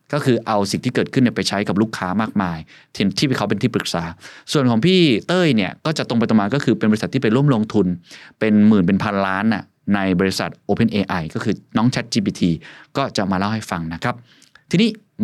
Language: Thai